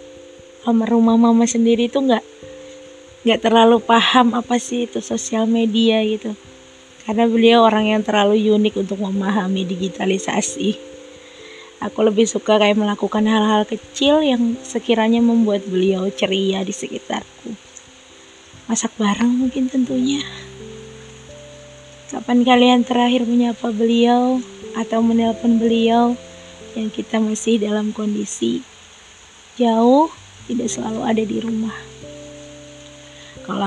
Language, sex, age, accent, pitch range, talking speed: Indonesian, female, 20-39, native, 205-240 Hz, 110 wpm